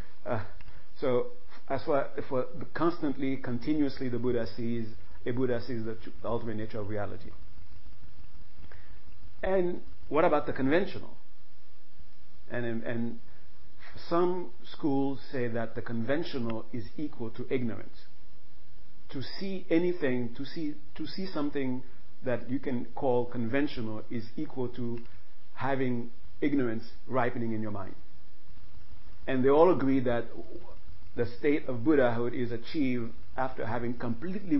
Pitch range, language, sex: 95-135 Hz, English, male